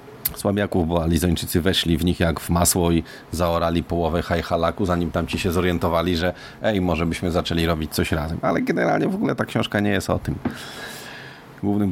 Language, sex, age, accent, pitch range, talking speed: Polish, male, 40-59, native, 85-95 Hz, 185 wpm